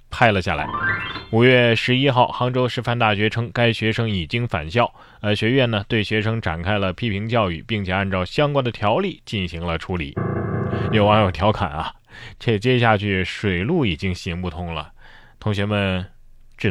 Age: 20-39